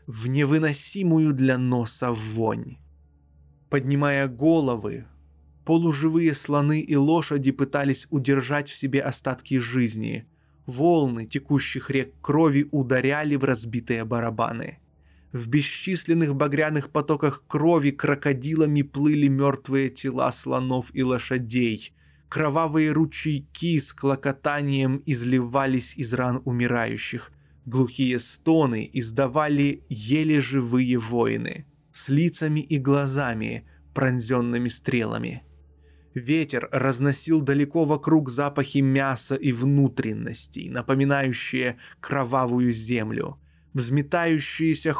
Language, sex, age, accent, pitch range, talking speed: Russian, male, 20-39, native, 120-145 Hz, 90 wpm